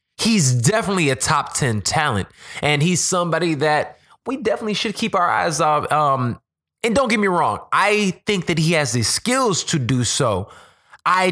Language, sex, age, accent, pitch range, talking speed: English, male, 20-39, American, 125-175 Hz, 180 wpm